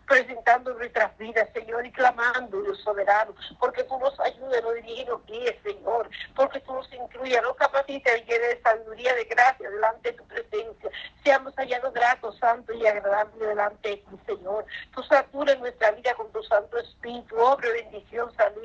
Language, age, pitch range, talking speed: Spanish, 50-69, 220-255 Hz, 170 wpm